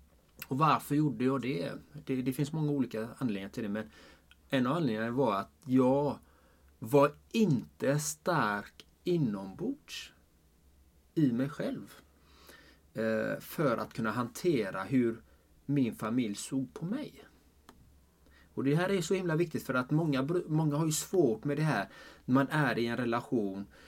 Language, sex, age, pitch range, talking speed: Swedish, male, 30-49, 105-145 Hz, 150 wpm